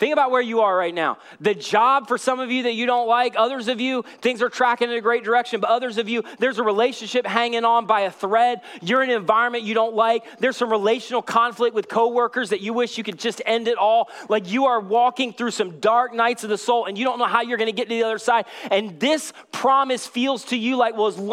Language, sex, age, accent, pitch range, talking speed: English, male, 30-49, American, 230-275 Hz, 260 wpm